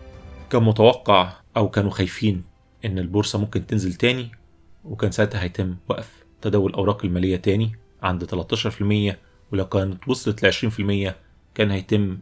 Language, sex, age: Arabic, male, 30-49